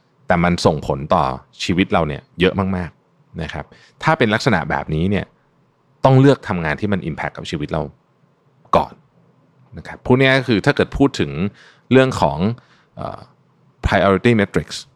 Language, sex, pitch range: Thai, male, 80-115 Hz